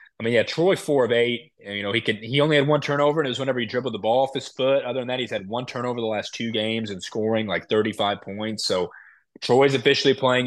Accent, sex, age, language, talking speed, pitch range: American, male, 20-39, English, 270 wpm, 105-125 Hz